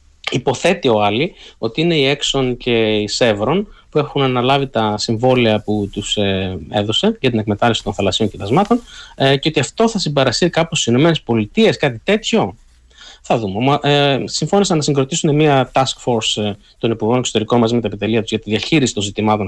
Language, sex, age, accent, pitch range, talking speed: Greek, male, 20-39, native, 105-140 Hz, 170 wpm